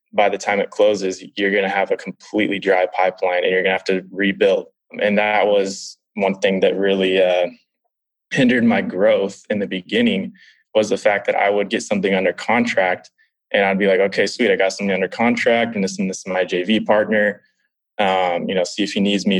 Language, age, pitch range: English, 20-39, 95-140 Hz